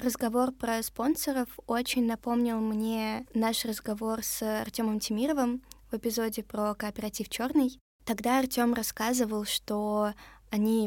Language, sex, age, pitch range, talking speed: Russian, female, 20-39, 210-240 Hz, 115 wpm